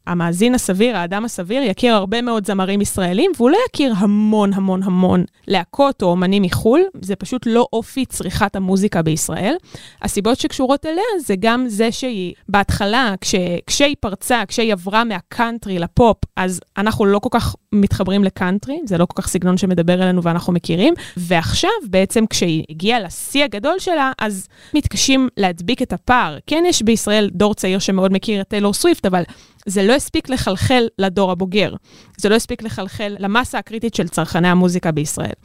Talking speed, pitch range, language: 160 wpm, 190-245 Hz, Hebrew